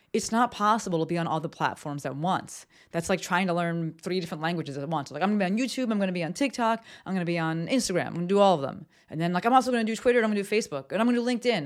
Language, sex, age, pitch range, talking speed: English, female, 30-49, 160-205 Hz, 350 wpm